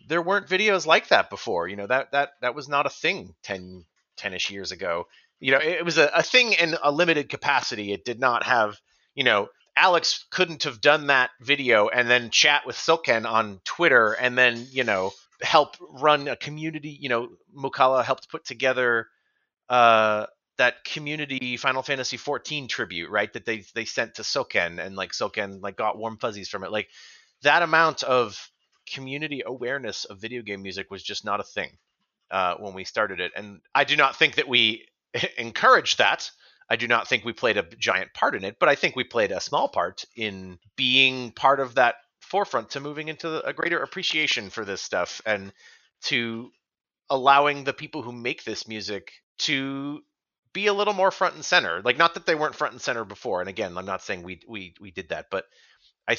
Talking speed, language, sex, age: 200 wpm, English, male, 30-49